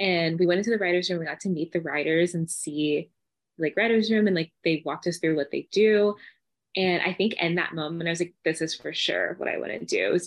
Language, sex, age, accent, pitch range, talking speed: English, female, 20-39, American, 155-200 Hz, 275 wpm